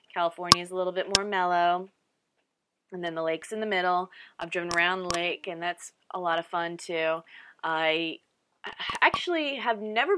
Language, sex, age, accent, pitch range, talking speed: English, female, 20-39, American, 180-225 Hz, 175 wpm